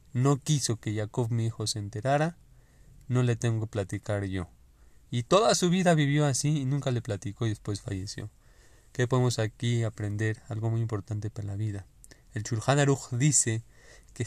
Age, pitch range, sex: 20-39, 115-135 Hz, male